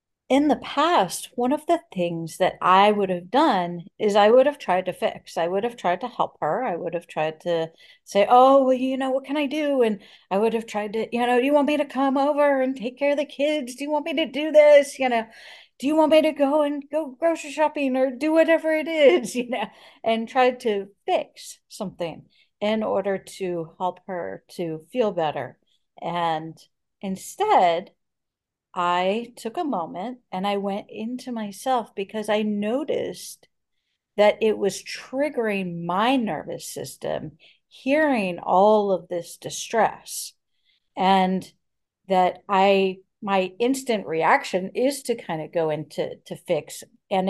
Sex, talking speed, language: female, 180 wpm, English